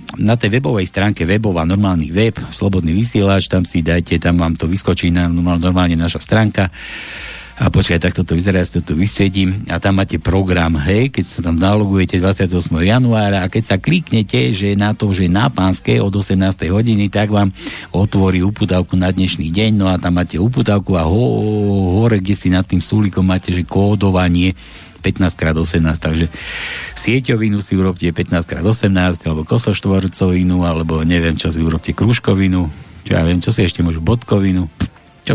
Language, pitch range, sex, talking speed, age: Slovak, 85-105 Hz, male, 170 wpm, 60-79